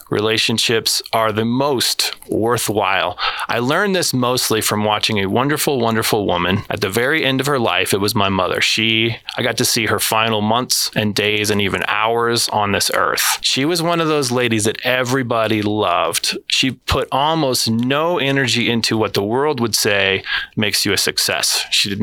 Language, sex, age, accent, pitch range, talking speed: English, male, 20-39, American, 105-130 Hz, 185 wpm